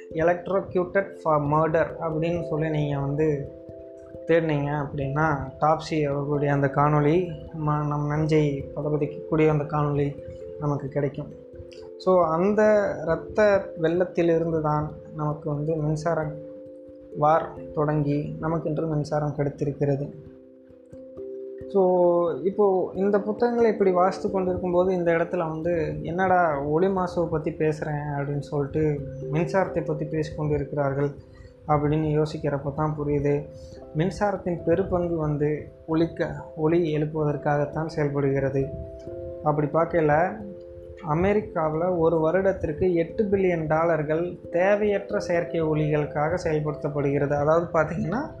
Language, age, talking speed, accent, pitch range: Tamil, 20-39, 100 wpm, native, 145-170 Hz